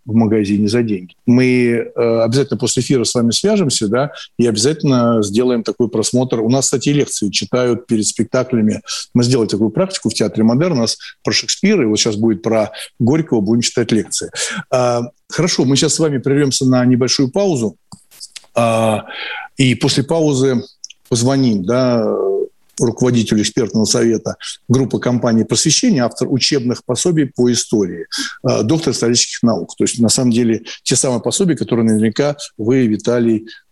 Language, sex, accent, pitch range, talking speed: Russian, male, native, 115-140 Hz, 150 wpm